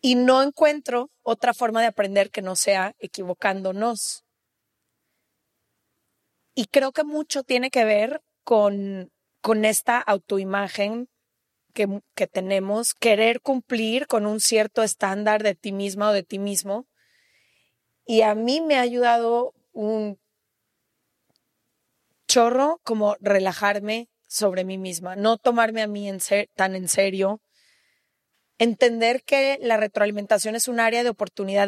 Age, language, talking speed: 20-39, Spanish, 125 wpm